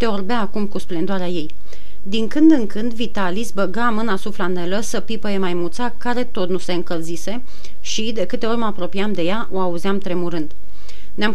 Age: 30-49